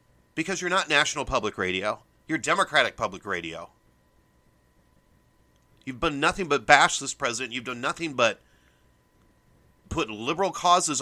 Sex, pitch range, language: male, 125-180 Hz, English